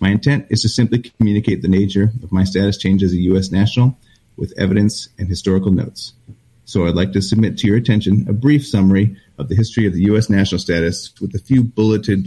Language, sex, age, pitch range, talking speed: English, male, 30-49, 95-115 Hz, 215 wpm